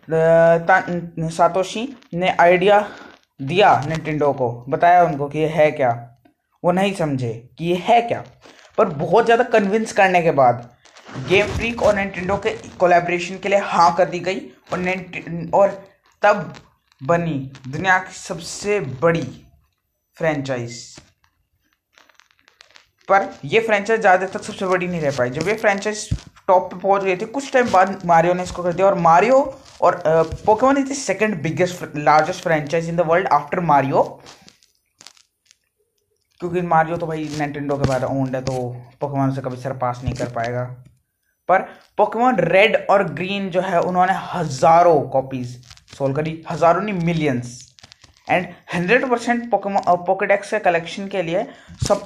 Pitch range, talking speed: 145-195 Hz, 140 wpm